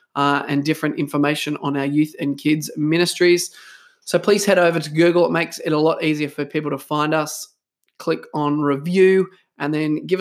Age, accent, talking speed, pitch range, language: 20-39, Australian, 195 wpm, 150-180 Hz, English